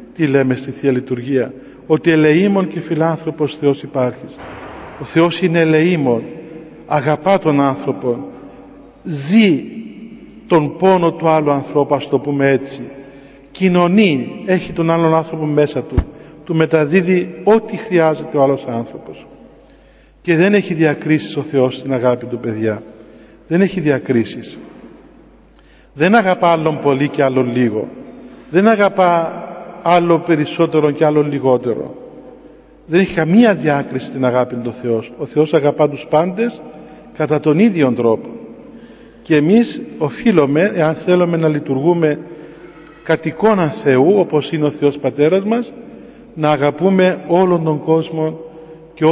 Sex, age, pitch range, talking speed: male, 50-69, 140-170 Hz, 130 wpm